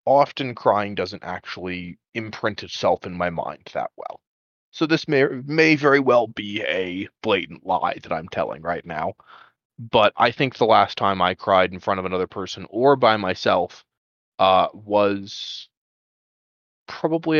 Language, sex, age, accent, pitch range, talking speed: English, male, 20-39, American, 95-130 Hz, 155 wpm